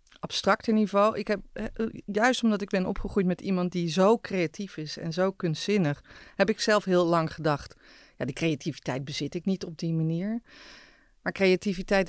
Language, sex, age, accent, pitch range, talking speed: Dutch, female, 30-49, Dutch, 155-190 Hz, 175 wpm